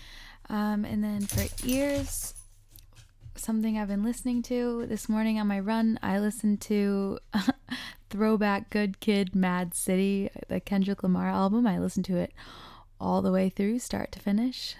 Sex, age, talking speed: female, 10-29, 155 wpm